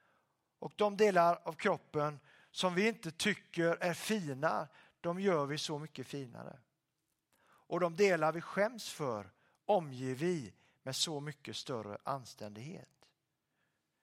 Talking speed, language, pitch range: 130 wpm, Swedish, 135-180 Hz